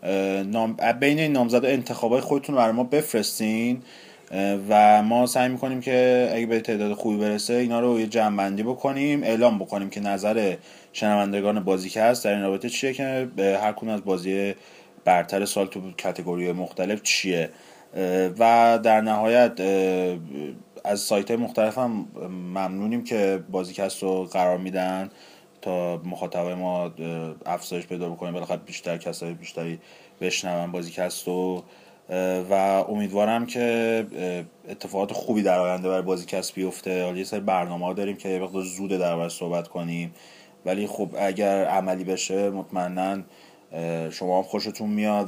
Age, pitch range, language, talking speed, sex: 30-49, 90-110 Hz, Persian, 135 wpm, male